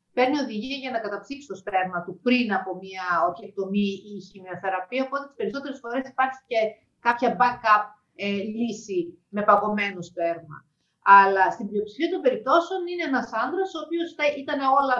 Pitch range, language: 205-300 Hz, English